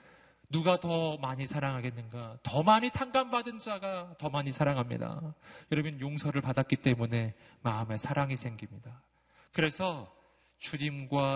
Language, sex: Korean, male